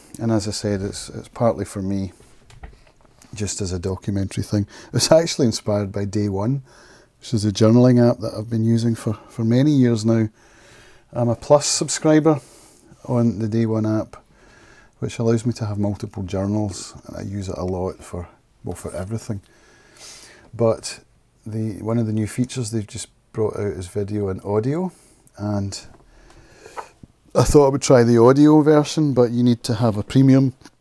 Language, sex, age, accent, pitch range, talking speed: English, male, 30-49, British, 105-120 Hz, 175 wpm